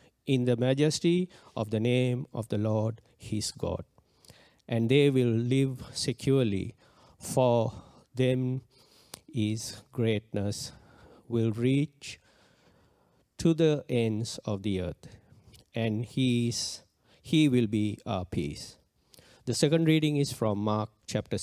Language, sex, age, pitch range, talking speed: English, male, 50-69, 110-140 Hz, 120 wpm